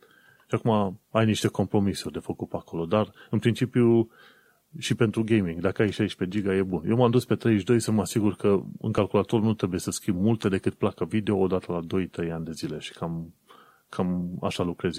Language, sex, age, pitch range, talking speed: Romanian, male, 30-49, 95-120 Hz, 200 wpm